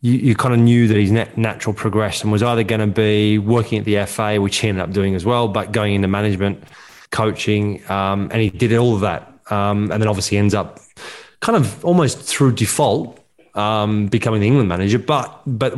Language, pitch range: English, 105-120 Hz